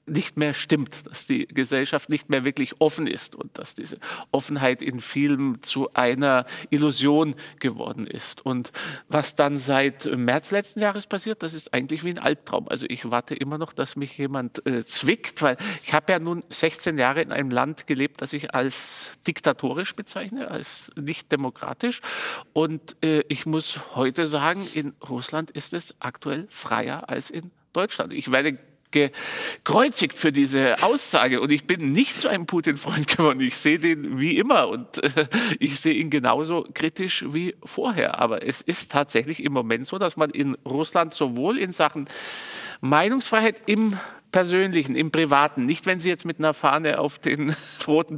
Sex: male